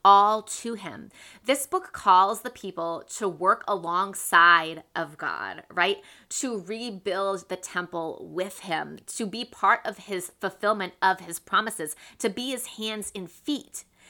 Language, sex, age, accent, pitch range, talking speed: English, female, 20-39, American, 190-245 Hz, 150 wpm